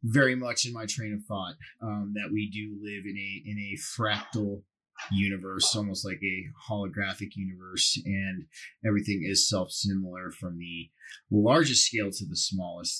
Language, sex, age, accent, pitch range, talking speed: English, male, 30-49, American, 100-125 Hz, 155 wpm